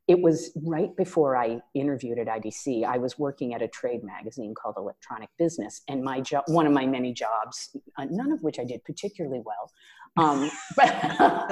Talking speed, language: 180 wpm, English